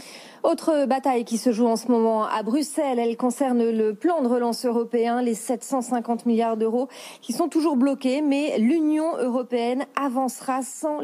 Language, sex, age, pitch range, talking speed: French, female, 40-59, 220-270 Hz, 165 wpm